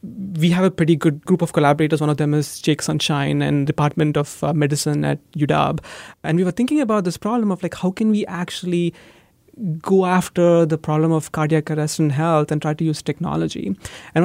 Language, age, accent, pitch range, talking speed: English, 30-49, Indian, 155-190 Hz, 200 wpm